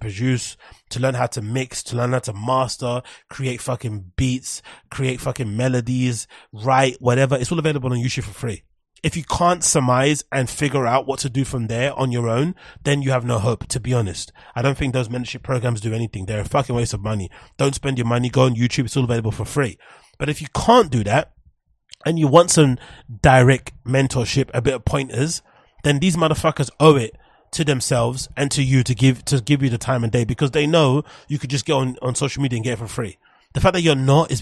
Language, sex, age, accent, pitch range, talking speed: English, male, 30-49, British, 120-140 Hz, 230 wpm